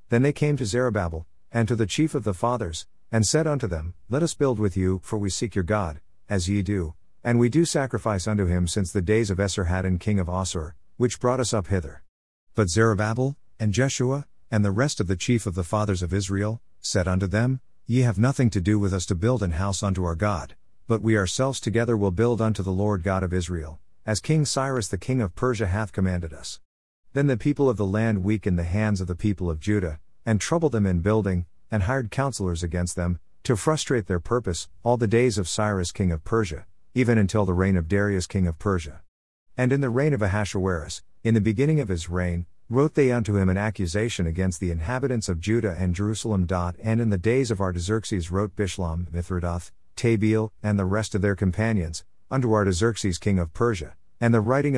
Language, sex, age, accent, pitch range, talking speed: English, male, 50-69, American, 90-115 Hz, 215 wpm